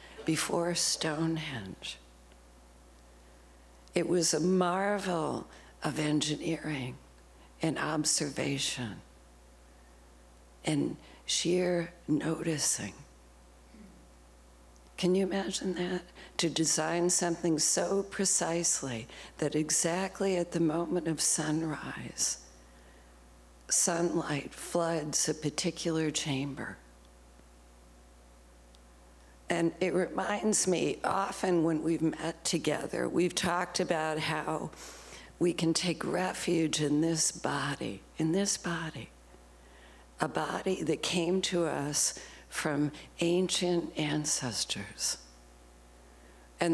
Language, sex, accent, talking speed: English, female, American, 85 wpm